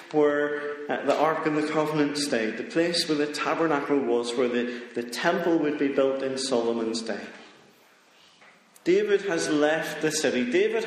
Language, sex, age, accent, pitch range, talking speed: English, male, 40-59, British, 120-160 Hz, 165 wpm